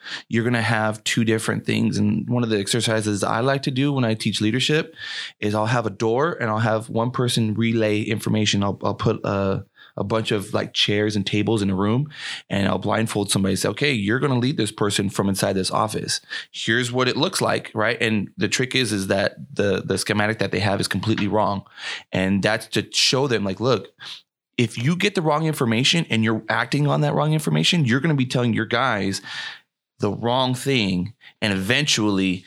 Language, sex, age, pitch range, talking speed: English, male, 20-39, 100-125 Hz, 215 wpm